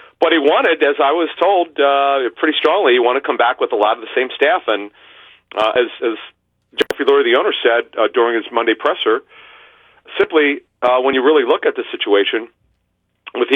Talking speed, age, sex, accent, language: 205 wpm, 40-59, male, American, English